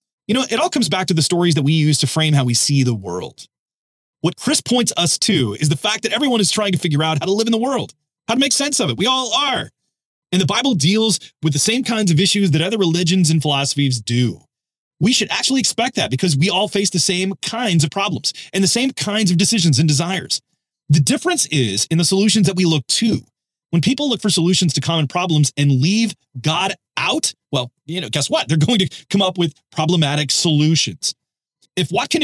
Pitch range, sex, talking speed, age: 150-220 Hz, male, 230 wpm, 30-49